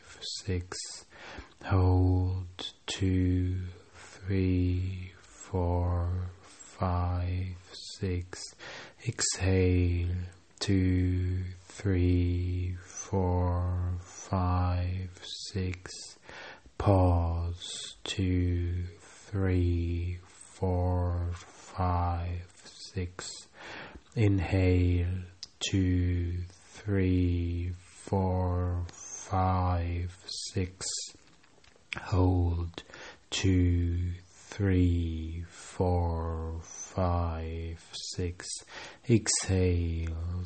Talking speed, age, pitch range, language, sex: 45 wpm, 30-49, 85-95 Hz, English, male